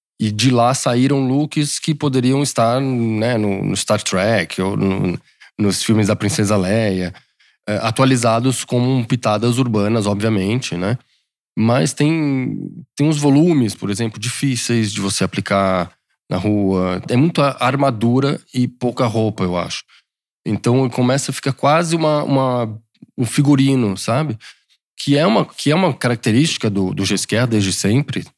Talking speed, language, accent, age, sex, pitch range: 145 wpm, Portuguese, Brazilian, 20-39, male, 100-135 Hz